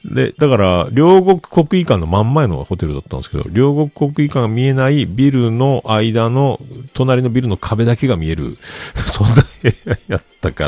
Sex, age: male, 50-69